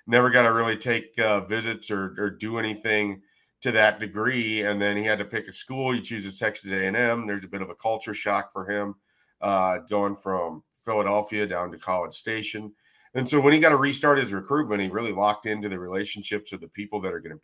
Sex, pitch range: male, 100-120 Hz